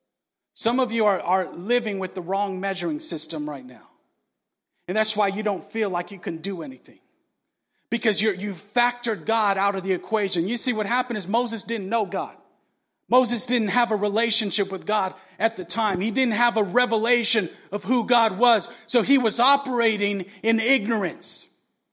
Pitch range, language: 210-290 Hz, English